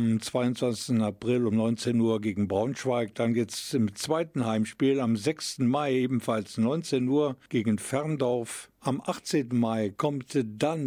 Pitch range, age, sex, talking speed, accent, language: 110-135 Hz, 50-69, male, 150 wpm, German, German